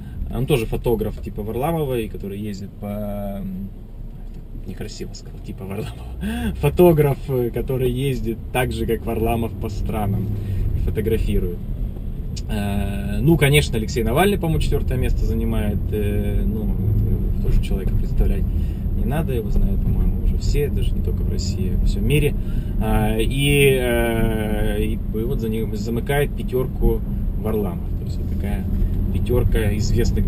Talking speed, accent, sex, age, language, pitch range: 130 wpm, native, male, 20-39, Russian, 95-115 Hz